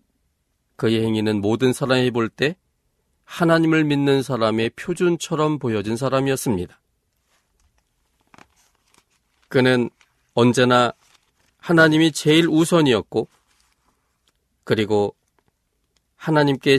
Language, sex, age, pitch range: Korean, male, 40-59, 100-140 Hz